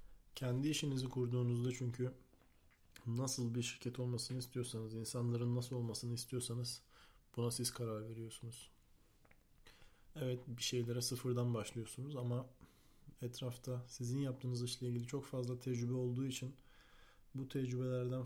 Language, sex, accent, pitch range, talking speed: Turkish, male, native, 120-130 Hz, 115 wpm